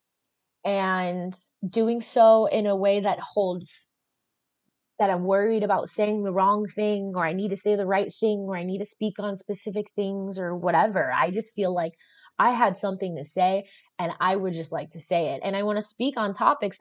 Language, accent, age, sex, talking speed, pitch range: English, American, 20-39, female, 205 wpm, 165-205 Hz